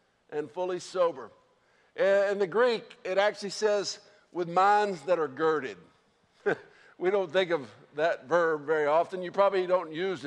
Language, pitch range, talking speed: English, 170-215 Hz, 150 wpm